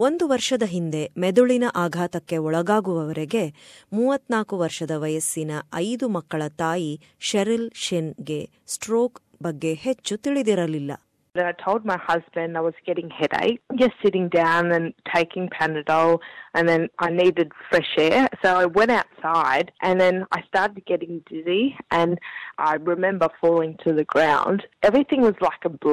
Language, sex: Kannada, female